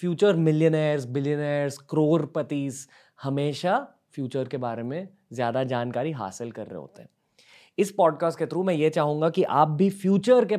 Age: 20-39